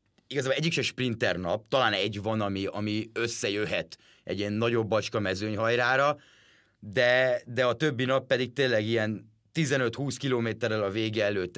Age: 30-49